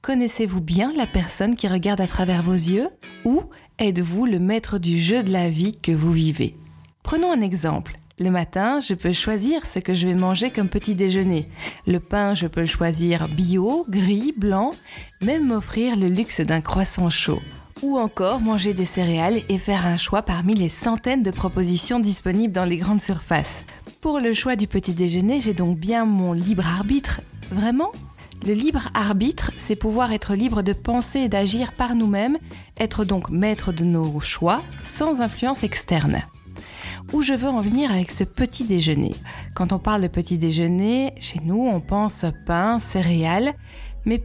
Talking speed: 175 wpm